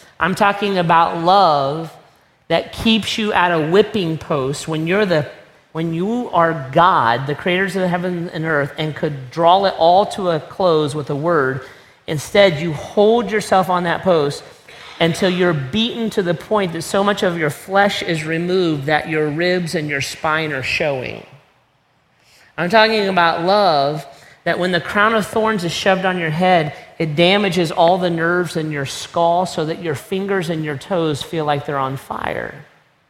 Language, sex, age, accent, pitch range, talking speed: English, male, 40-59, American, 155-185 Hz, 180 wpm